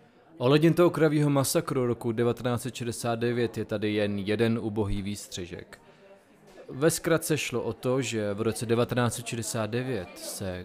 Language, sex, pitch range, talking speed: Czech, male, 105-125 Hz, 125 wpm